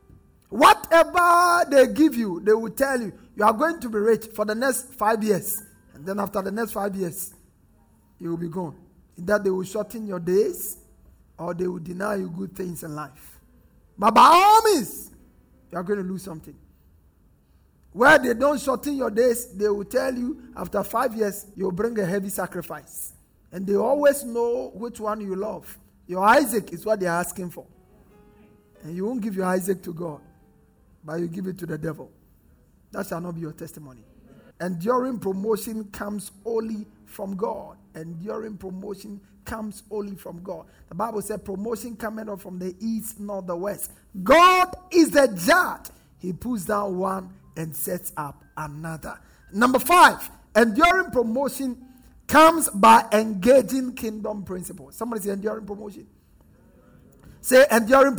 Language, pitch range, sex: English, 180-240 Hz, male